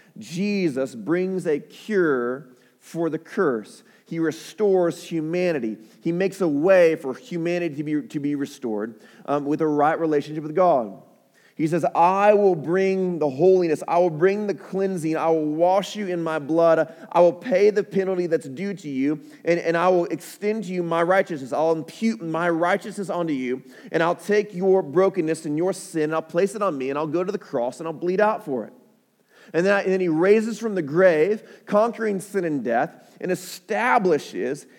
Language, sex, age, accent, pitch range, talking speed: English, male, 30-49, American, 155-195 Hz, 190 wpm